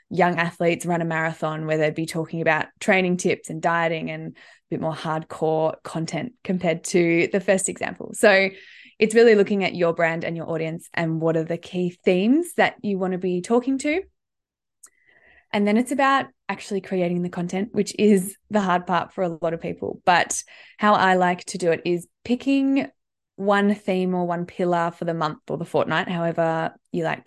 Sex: female